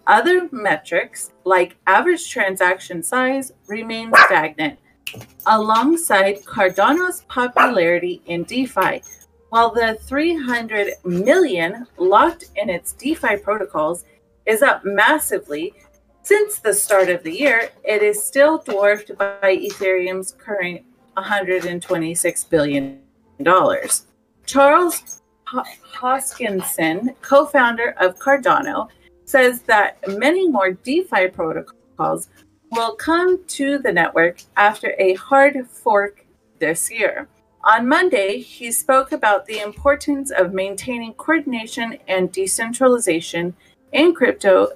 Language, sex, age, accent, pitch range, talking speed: English, female, 30-49, American, 185-280 Hz, 100 wpm